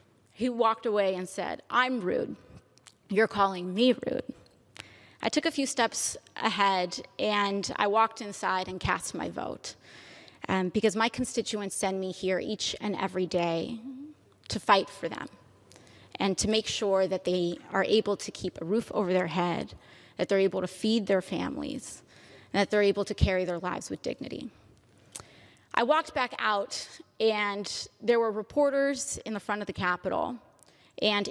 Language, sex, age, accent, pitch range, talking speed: English, female, 20-39, American, 190-235 Hz, 165 wpm